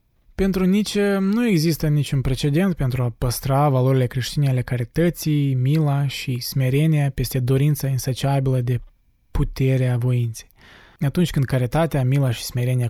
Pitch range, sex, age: 125-160 Hz, male, 20-39